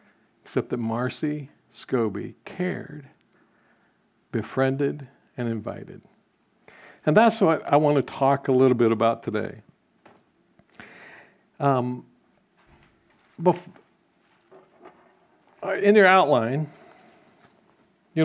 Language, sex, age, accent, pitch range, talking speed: English, male, 50-69, American, 125-155 Hz, 80 wpm